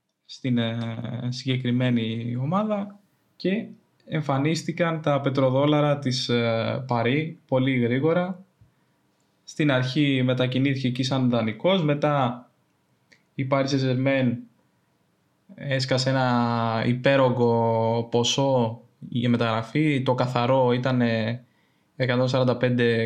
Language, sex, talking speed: Greek, male, 85 wpm